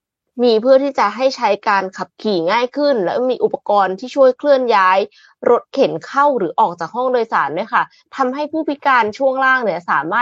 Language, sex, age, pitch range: Thai, female, 20-39, 195-265 Hz